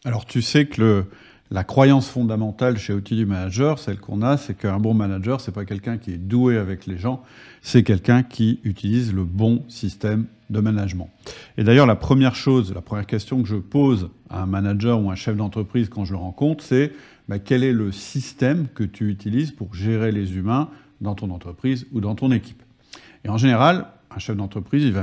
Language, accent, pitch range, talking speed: French, French, 100-125 Hz, 210 wpm